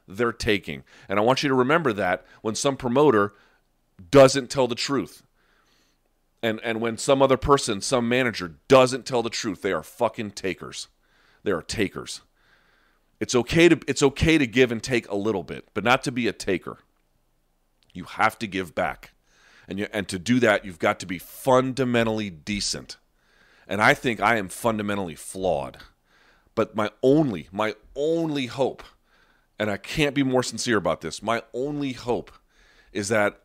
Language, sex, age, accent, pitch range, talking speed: English, male, 40-59, American, 90-125 Hz, 170 wpm